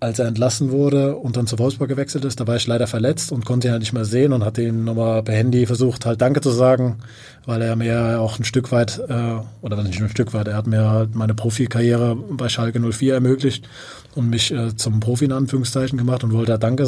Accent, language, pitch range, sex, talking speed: German, German, 115-135 Hz, male, 250 wpm